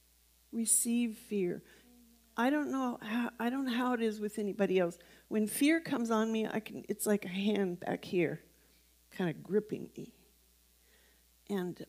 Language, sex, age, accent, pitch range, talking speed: English, female, 50-69, American, 160-230 Hz, 165 wpm